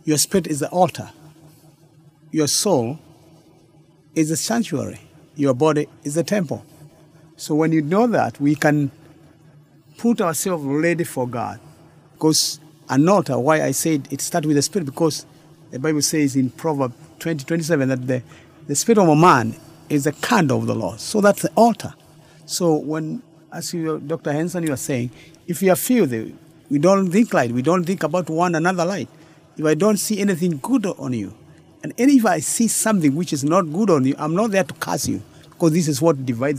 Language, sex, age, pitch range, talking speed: English, male, 50-69, 145-175 Hz, 190 wpm